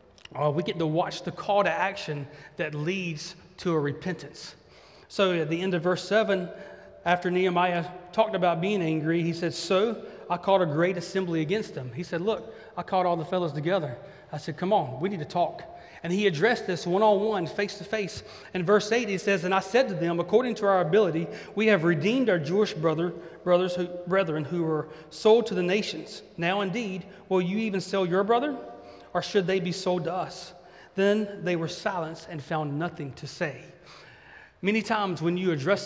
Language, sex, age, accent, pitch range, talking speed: English, male, 30-49, American, 155-195 Hz, 195 wpm